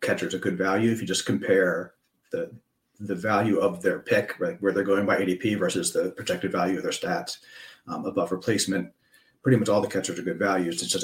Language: English